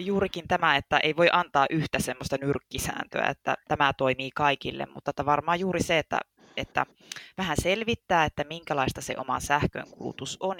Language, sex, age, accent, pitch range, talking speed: Finnish, female, 20-39, native, 135-170 Hz, 155 wpm